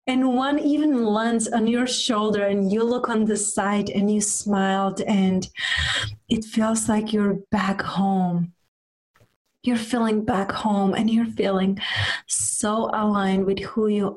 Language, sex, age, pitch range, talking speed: English, female, 30-49, 190-230 Hz, 150 wpm